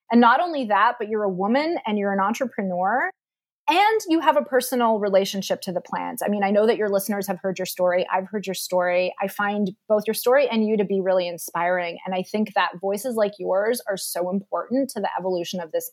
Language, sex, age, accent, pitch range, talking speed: English, female, 30-49, American, 190-255 Hz, 235 wpm